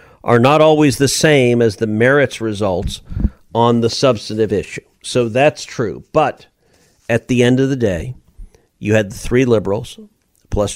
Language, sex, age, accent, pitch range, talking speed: English, male, 50-69, American, 95-125 Hz, 160 wpm